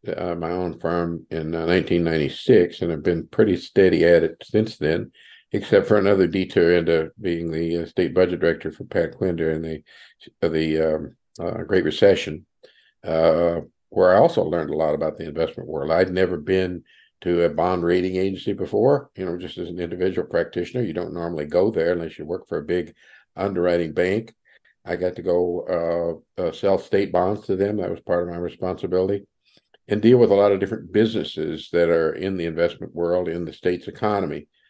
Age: 50-69